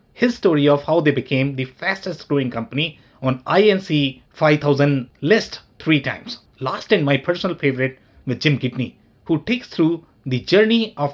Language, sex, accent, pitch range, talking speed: English, male, Indian, 130-180 Hz, 160 wpm